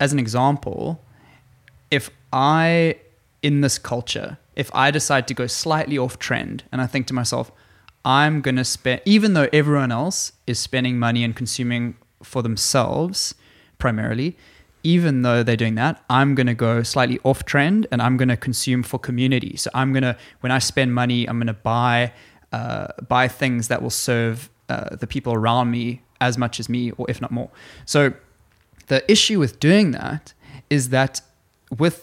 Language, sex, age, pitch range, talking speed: English, male, 20-39, 120-145 Hz, 170 wpm